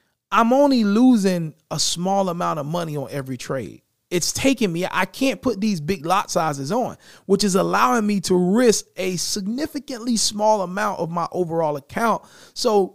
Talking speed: 170 wpm